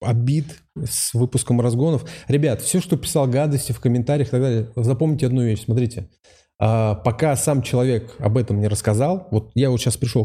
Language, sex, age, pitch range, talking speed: Russian, male, 20-39, 110-145 Hz, 175 wpm